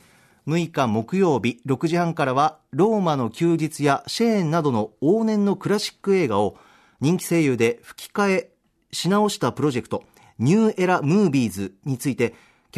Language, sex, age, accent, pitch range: Japanese, male, 40-59, native, 125-190 Hz